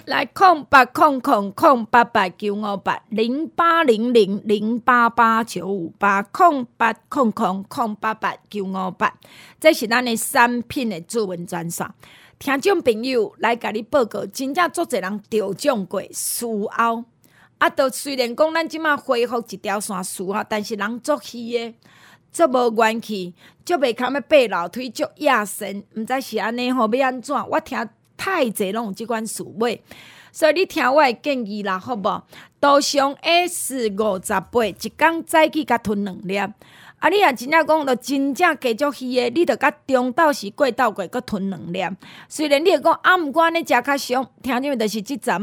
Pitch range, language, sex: 215-285 Hz, Chinese, female